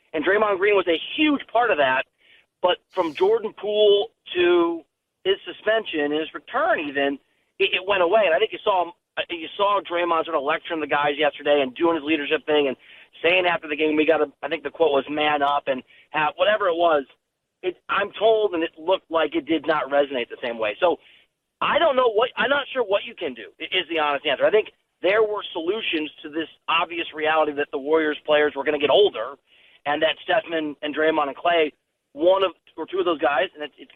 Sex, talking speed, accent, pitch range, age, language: male, 220 wpm, American, 150-205 Hz, 40-59, English